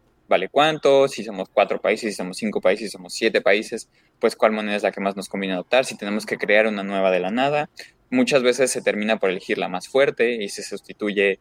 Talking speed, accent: 235 wpm, Mexican